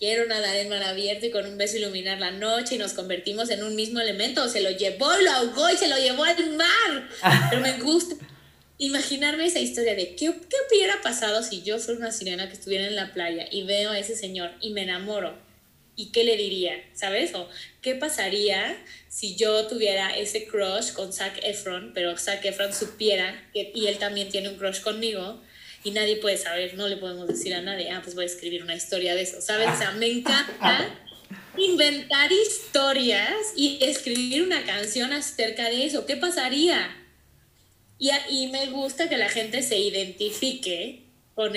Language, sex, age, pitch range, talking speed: Spanish, female, 20-39, 195-250 Hz, 190 wpm